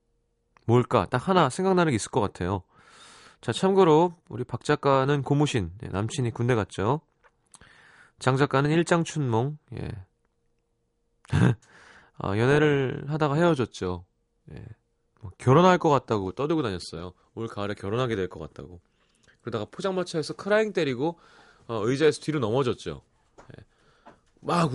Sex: male